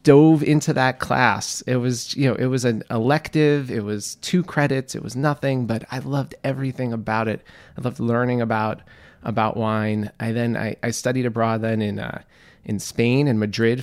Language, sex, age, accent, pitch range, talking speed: English, male, 30-49, American, 110-130 Hz, 190 wpm